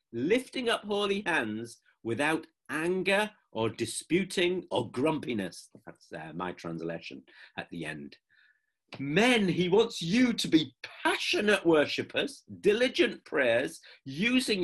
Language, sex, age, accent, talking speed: English, male, 50-69, British, 115 wpm